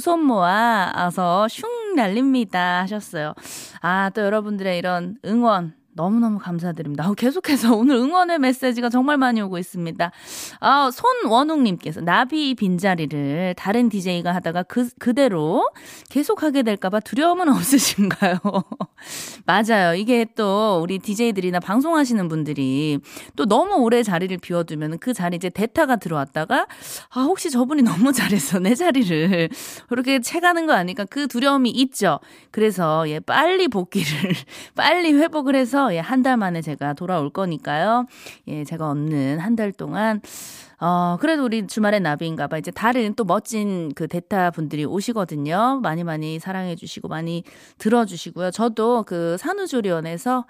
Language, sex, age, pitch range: Korean, female, 20-39, 175-250 Hz